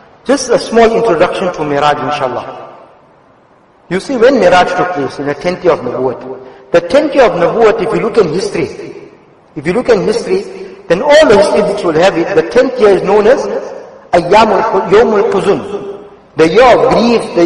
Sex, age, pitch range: male, 50-69, 180-275 Hz